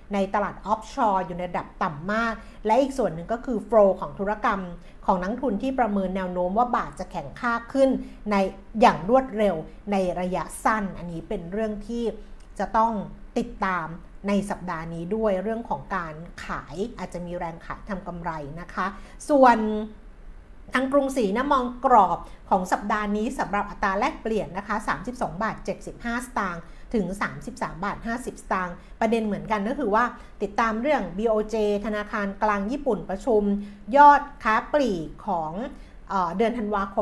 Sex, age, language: female, 60-79, Thai